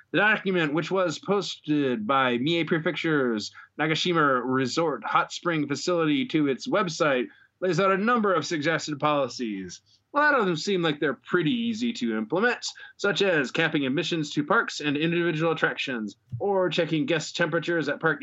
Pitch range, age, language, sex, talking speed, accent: 140-170 Hz, 20-39, English, male, 160 wpm, American